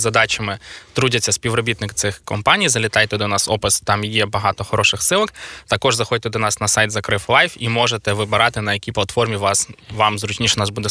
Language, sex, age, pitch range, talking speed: Ukrainian, male, 20-39, 110-125 Hz, 180 wpm